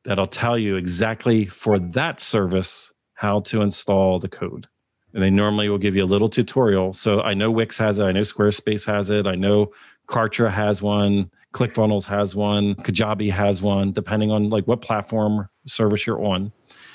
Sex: male